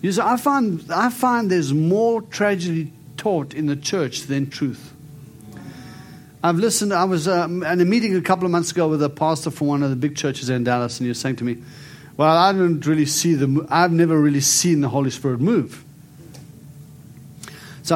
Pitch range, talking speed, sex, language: 140-170 Hz, 200 wpm, male, English